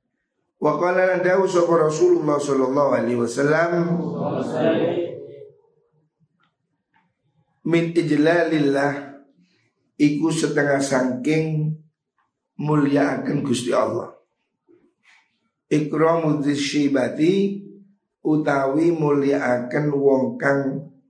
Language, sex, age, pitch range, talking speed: Indonesian, male, 50-69, 135-170 Hz, 65 wpm